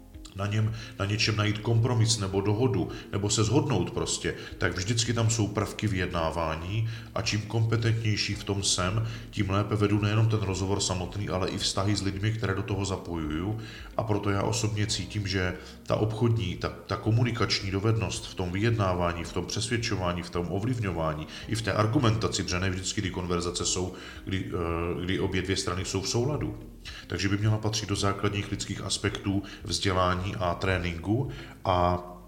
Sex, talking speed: male, 170 wpm